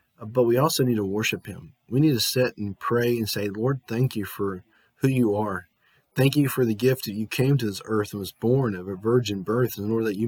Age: 30-49